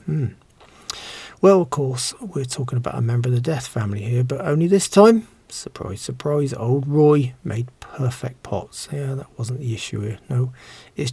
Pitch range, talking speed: 115-145 Hz, 180 wpm